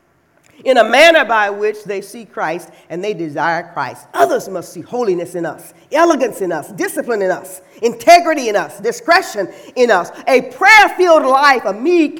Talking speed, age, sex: 170 wpm, 40-59, female